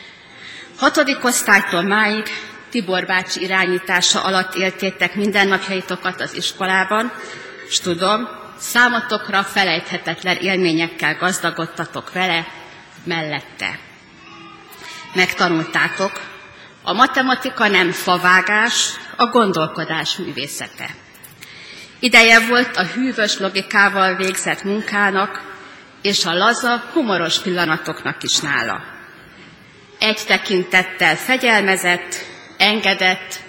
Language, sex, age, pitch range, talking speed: Hungarian, female, 30-49, 180-215 Hz, 80 wpm